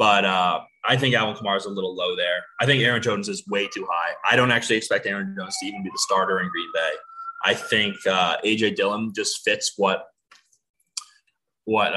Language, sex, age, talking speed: English, male, 20-39, 210 wpm